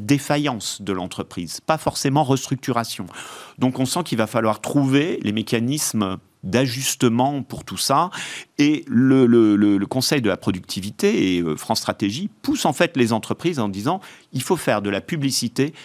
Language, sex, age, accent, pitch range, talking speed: French, male, 40-59, French, 100-130 Hz, 165 wpm